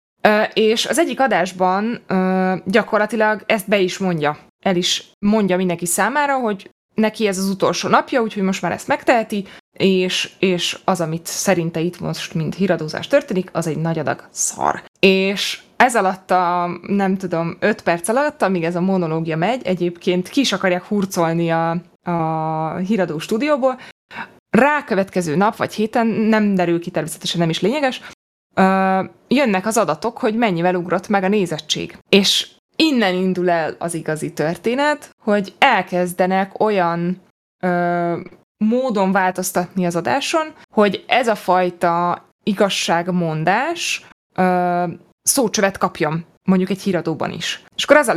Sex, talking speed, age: female, 145 wpm, 20-39